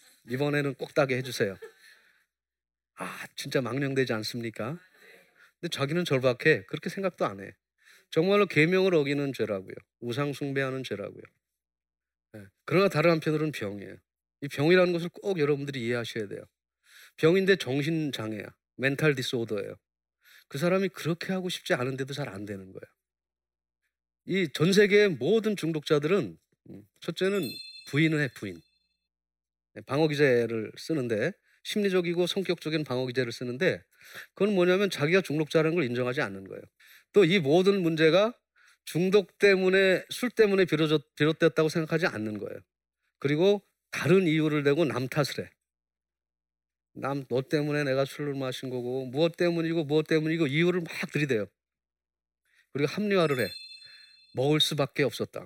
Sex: male